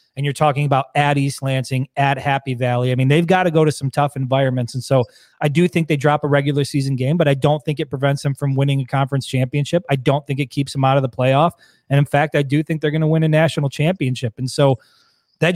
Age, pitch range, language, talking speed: 30-49, 135-155 Hz, English, 265 wpm